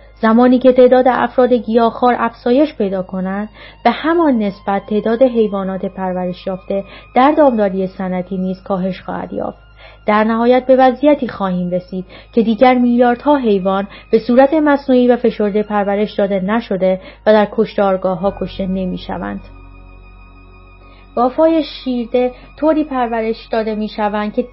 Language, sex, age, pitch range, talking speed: Persian, female, 30-49, 195-255 Hz, 125 wpm